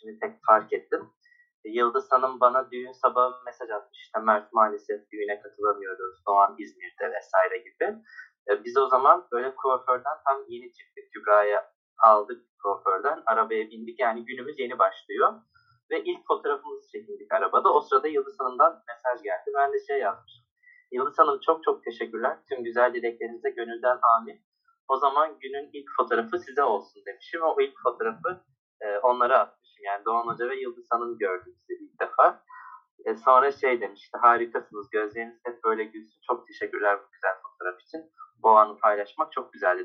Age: 30-49